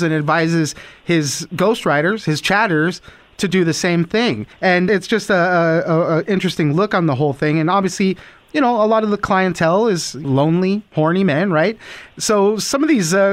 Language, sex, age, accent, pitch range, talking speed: English, male, 30-49, American, 155-195 Hz, 190 wpm